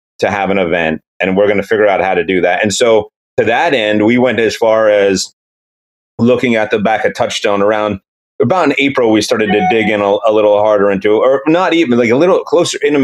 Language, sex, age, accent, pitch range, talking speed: English, male, 30-49, American, 100-115 Hz, 240 wpm